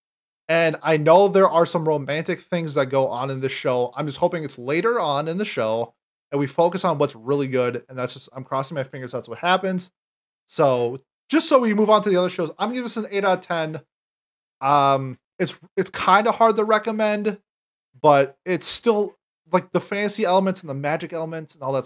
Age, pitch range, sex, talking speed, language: 30-49, 140-185 Hz, male, 215 wpm, English